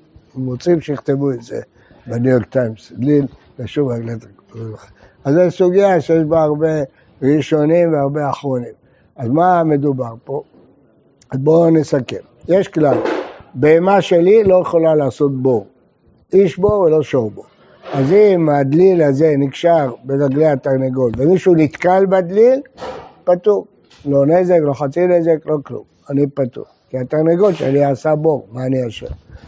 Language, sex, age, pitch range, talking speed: Hebrew, male, 60-79, 135-175 Hz, 140 wpm